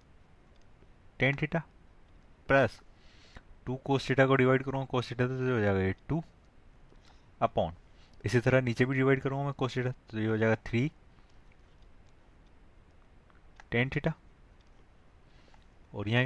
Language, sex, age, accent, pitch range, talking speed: Hindi, male, 20-39, native, 100-130 Hz, 120 wpm